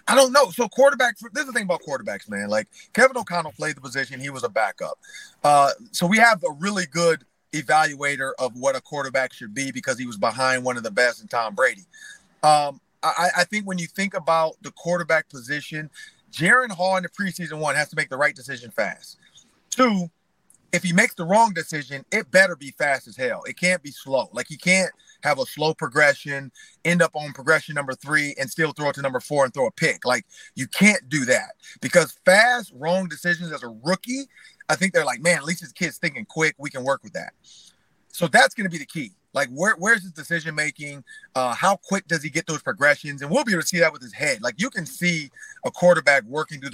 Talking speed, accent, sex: 225 wpm, American, male